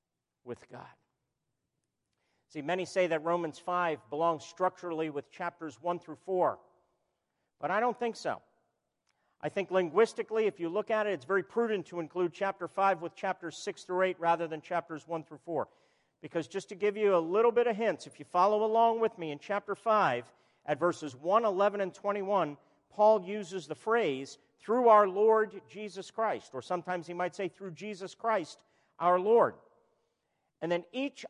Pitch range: 165-210 Hz